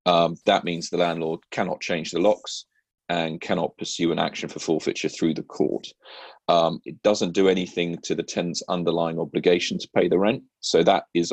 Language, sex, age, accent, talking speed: English, male, 40-59, British, 190 wpm